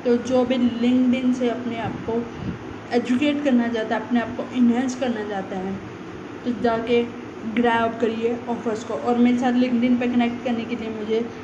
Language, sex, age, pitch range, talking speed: Hindi, female, 20-39, 230-255 Hz, 190 wpm